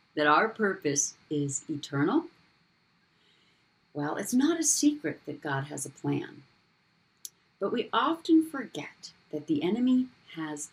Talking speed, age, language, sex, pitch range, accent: 130 wpm, 50-69, English, female, 150-220 Hz, American